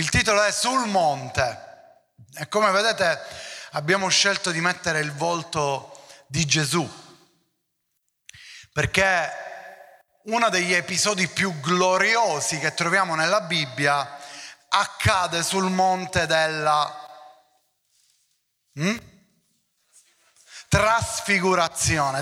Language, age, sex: Italian, 30-49, male